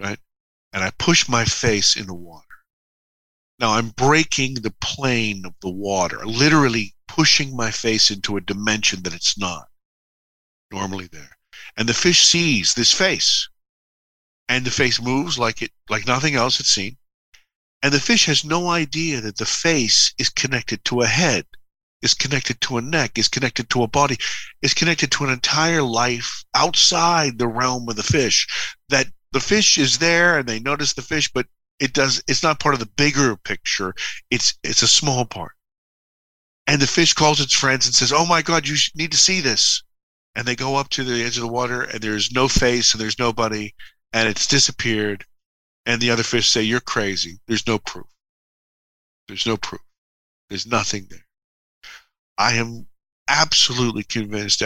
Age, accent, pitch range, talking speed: 50-69, American, 110-145 Hz, 180 wpm